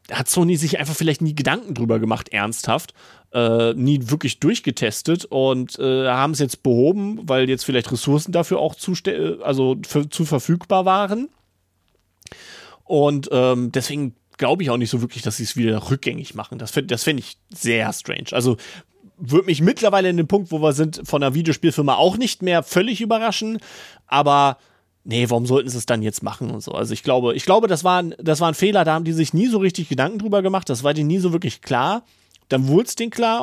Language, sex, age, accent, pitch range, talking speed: German, male, 30-49, German, 125-175 Hz, 210 wpm